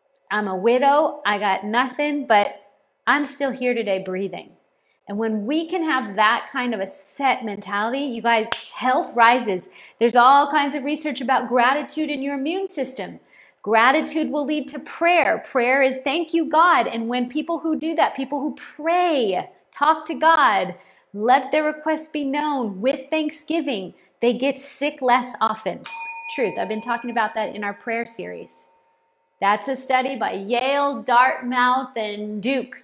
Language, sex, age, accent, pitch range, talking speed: English, female, 40-59, American, 240-315 Hz, 165 wpm